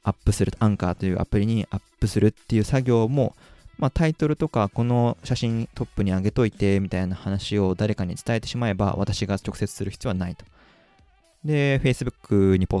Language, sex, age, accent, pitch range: Japanese, male, 20-39, native, 95-125 Hz